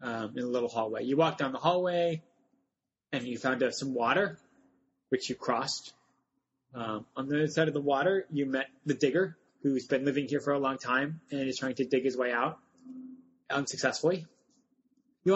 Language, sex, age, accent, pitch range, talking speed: English, male, 20-39, American, 130-170 Hz, 195 wpm